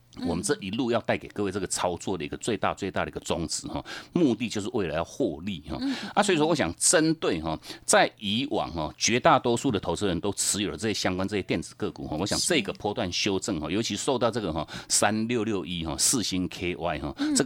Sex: male